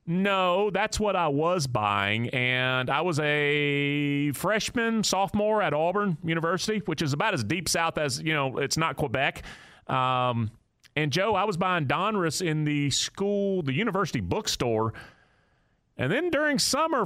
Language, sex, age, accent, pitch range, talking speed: English, male, 30-49, American, 115-165 Hz, 155 wpm